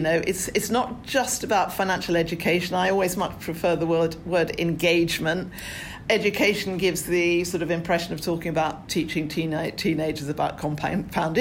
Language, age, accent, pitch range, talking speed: English, 50-69, British, 170-210 Hz, 155 wpm